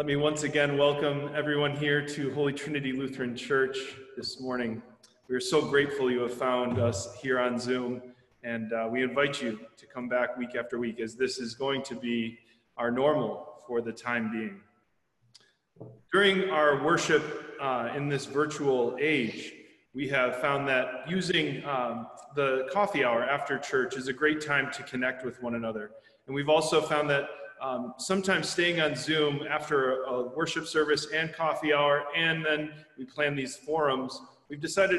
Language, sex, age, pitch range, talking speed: English, male, 30-49, 125-155 Hz, 175 wpm